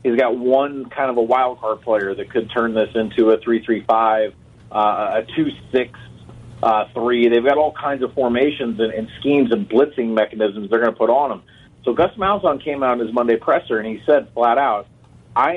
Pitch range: 115-140 Hz